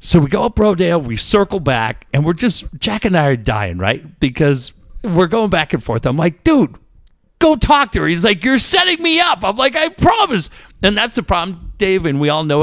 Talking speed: 235 wpm